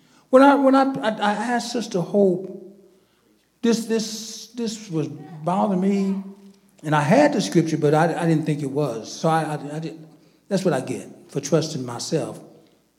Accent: American